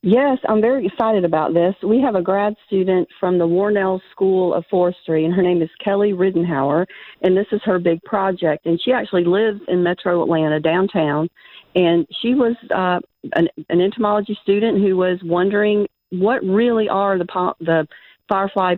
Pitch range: 170-205 Hz